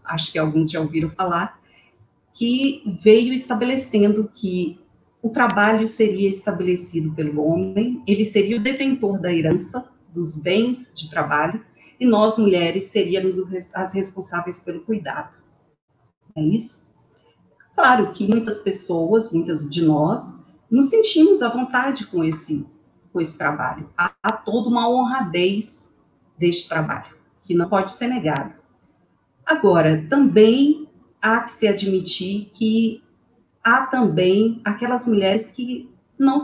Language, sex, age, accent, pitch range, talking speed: Portuguese, female, 40-59, Brazilian, 170-230 Hz, 125 wpm